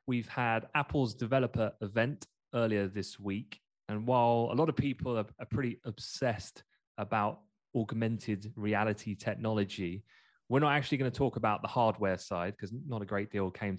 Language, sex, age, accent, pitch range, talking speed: English, male, 20-39, British, 95-120 Hz, 165 wpm